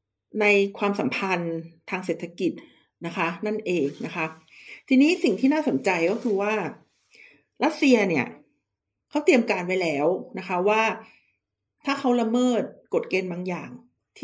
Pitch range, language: 175-240 Hz, Thai